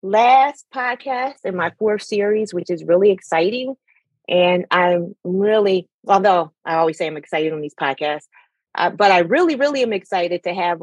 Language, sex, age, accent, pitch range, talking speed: English, female, 30-49, American, 175-250 Hz, 170 wpm